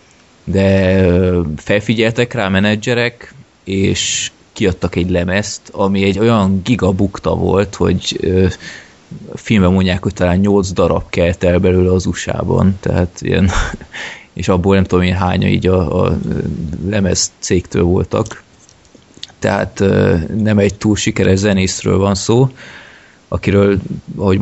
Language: Hungarian